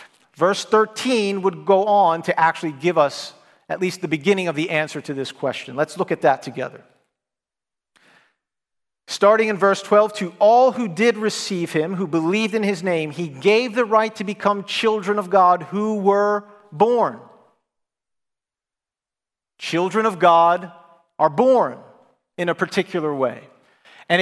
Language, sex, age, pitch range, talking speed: English, male, 40-59, 170-215 Hz, 150 wpm